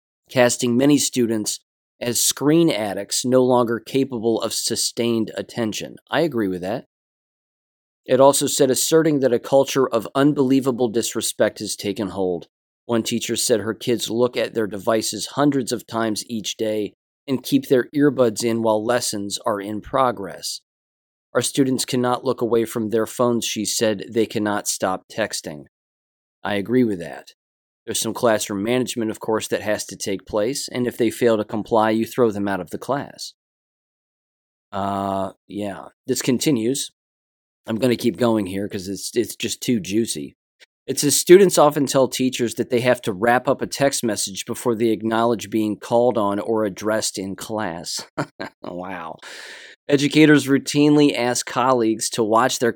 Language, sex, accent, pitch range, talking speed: English, male, American, 105-125 Hz, 165 wpm